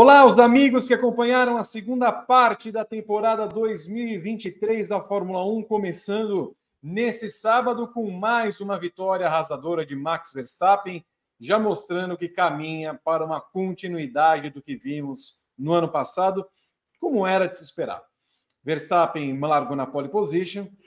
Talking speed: 140 wpm